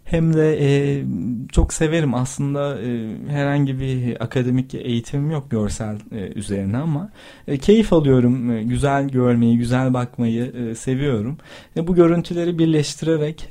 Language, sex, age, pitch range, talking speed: Turkish, male, 40-59, 120-150 Hz, 135 wpm